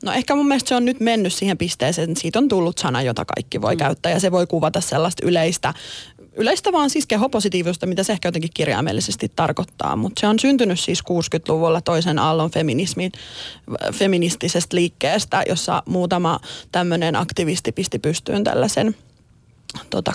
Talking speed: 160 wpm